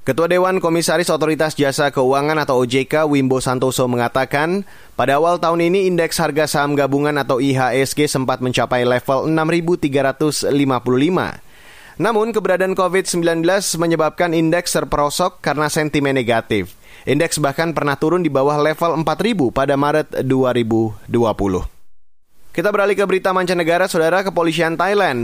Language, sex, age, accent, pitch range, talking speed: Indonesian, male, 30-49, native, 135-170 Hz, 125 wpm